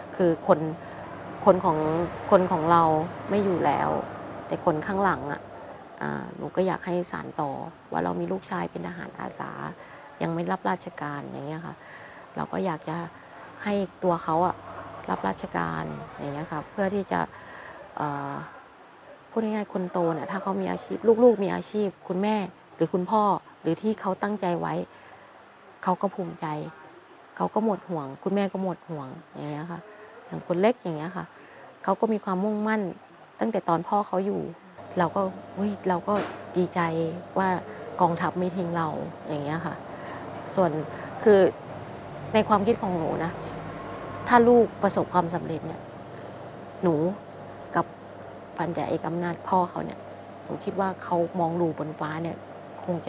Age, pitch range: 20-39, 160-195 Hz